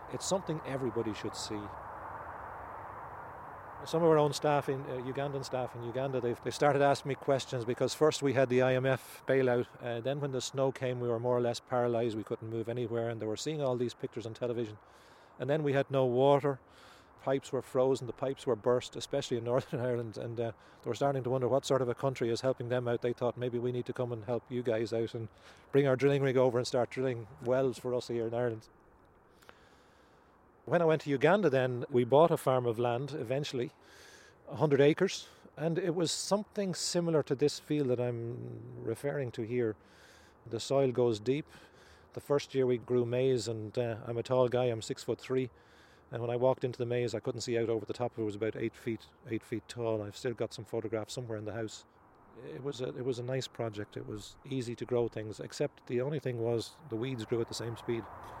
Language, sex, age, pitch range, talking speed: English, male, 40-59, 115-135 Hz, 225 wpm